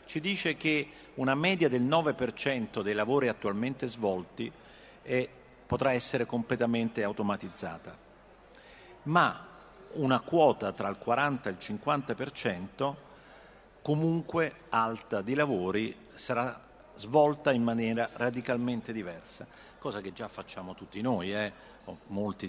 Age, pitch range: 50-69, 105-140 Hz